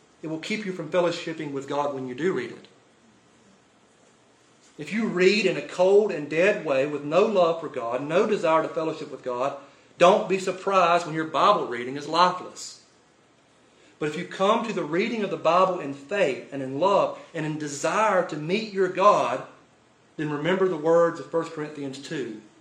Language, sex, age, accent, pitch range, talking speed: English, male, 40-59, American, 145-190 Hz, 190 wpm